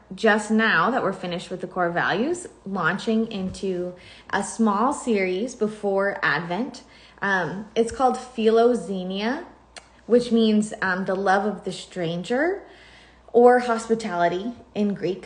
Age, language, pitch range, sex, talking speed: 20-39, English, 190-240 Hz, female, 130 wpm